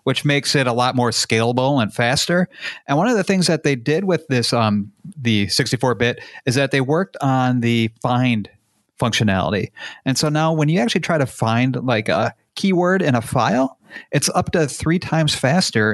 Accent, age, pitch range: American, 40-59, 115-155 Hz